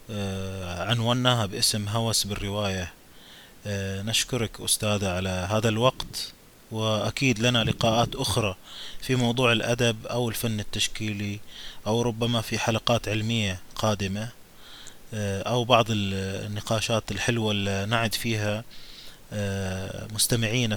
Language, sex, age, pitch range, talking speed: Arabic, male, 20-39, 105-120 Hz, 95 wpm